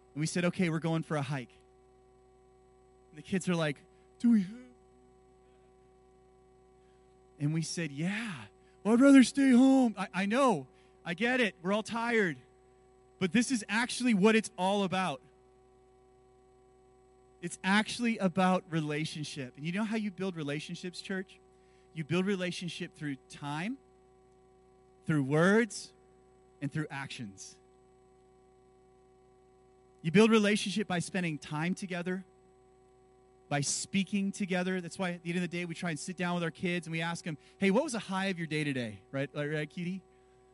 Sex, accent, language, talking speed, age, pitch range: male, American, English, 155 wpm, 30-49, 125-190 Hz